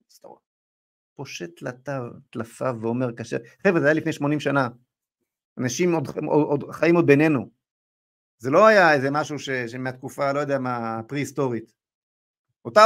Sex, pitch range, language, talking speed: male, 120-160 Hz, Hebrew, 125 wpm